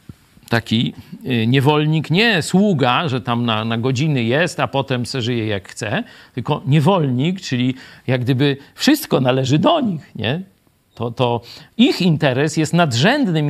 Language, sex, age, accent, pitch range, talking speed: Polish, male, 50-69, native, 115-165 Hz, 140 wpm